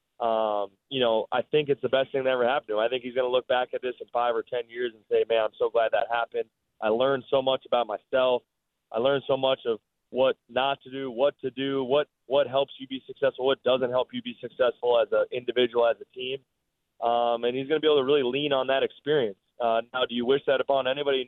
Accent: American